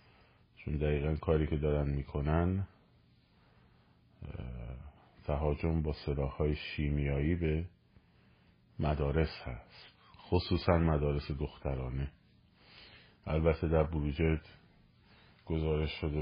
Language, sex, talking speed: Persian, male, 80 wpm